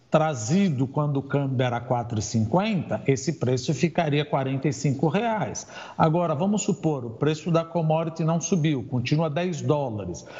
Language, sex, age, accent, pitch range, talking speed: Portuguese, male, 50-69, Brazilian, 145-205 Hz, 140 wpm